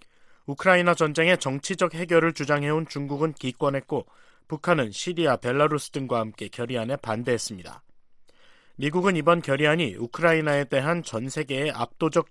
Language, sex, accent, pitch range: Korean, male, native, 130-170 Hz